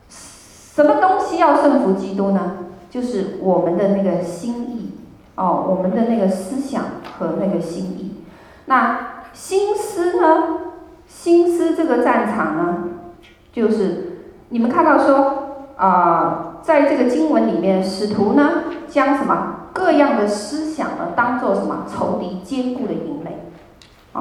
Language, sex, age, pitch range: Chinese, female, 30-49, 185-275 Hz